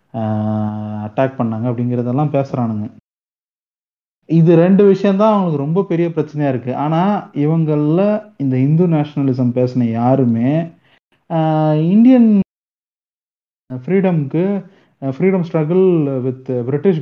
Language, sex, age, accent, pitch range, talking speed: Tamil, male, 30-49, native, 125-175 Hz, 90 wpm